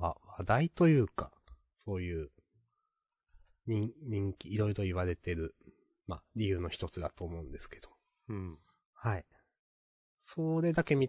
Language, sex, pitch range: Japanese, male, 95-130 Hz